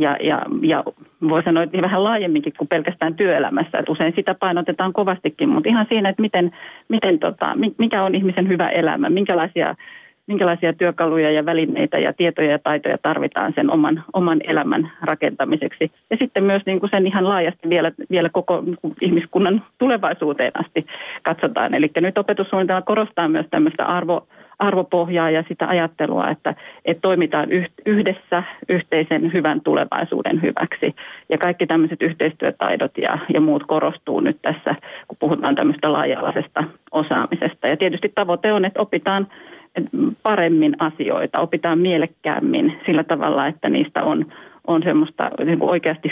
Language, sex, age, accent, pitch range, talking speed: Finnish, female, 30-49, native, 165-205 Hz, 145 wpm